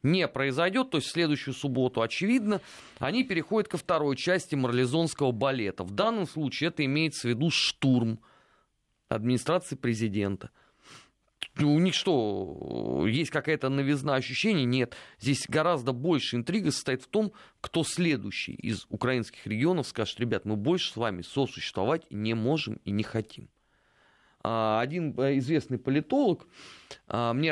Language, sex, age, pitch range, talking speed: Russian, male, 30-49, 115-155 Hz, 135 wpm